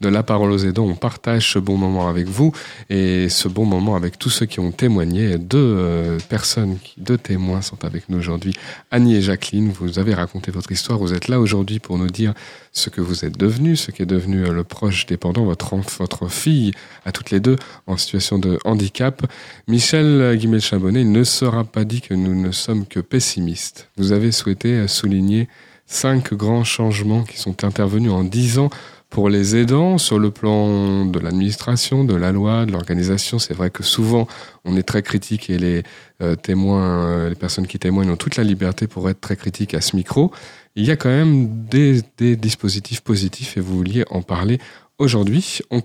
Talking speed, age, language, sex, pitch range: 195 wpm, 30-49, French, male, 95-120 Hz